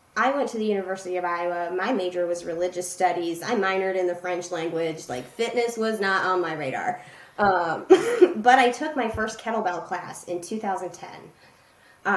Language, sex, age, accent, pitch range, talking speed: English, female, 20-39, American, 180-220 Hz, 175 wpm